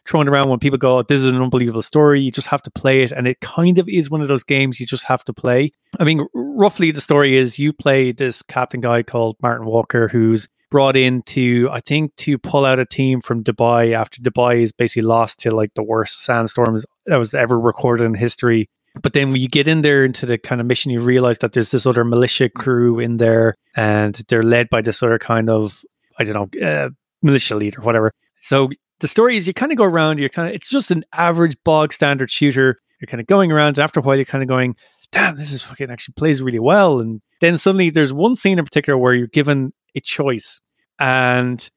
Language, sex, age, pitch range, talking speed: English, male, 20-39, 120-145 Hz, 235 wpm